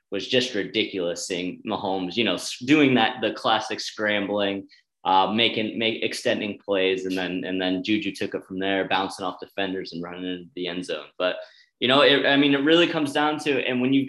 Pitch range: 95-120 Hz